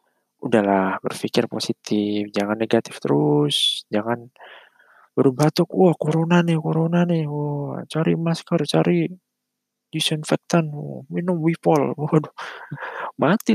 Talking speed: 95 wpm